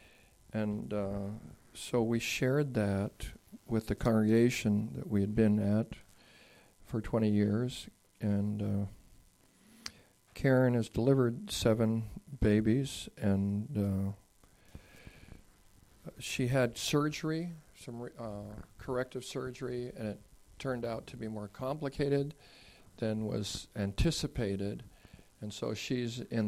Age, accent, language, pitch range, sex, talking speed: 50-69, American, English, 105-130 Hz, male, 110 wpm